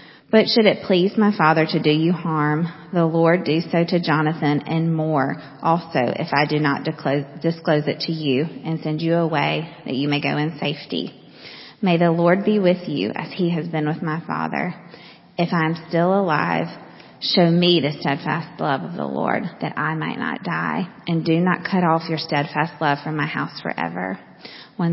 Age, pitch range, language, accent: 30-49, 145-170 Hz, English, American